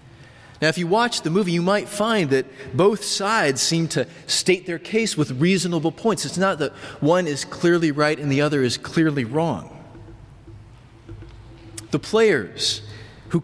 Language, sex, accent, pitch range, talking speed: English, male, American, 120-165 Hz, 160 wpm